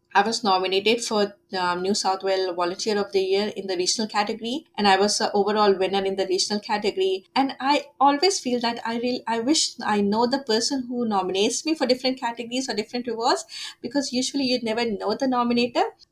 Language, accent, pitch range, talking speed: English, Indian, 195-235 Hz, 210 wpm